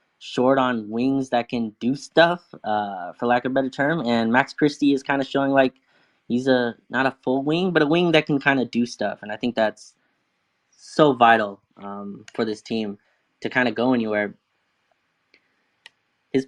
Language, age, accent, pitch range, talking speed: English, 10-29, American, 110-130 Hz, 195 wpm